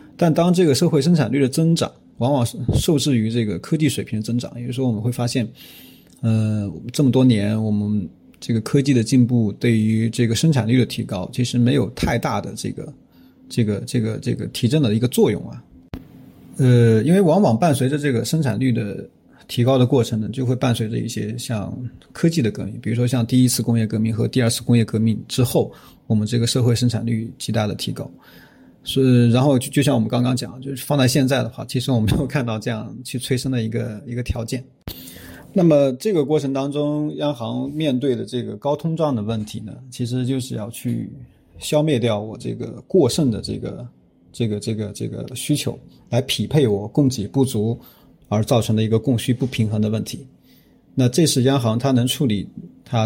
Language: Chinese